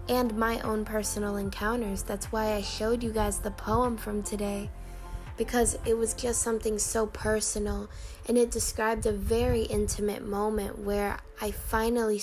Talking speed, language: 155 wpm, English